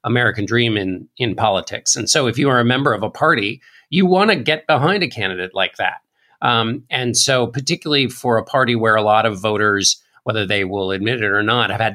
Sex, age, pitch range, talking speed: male, 50-69, 105-140 Hz, 225 wpm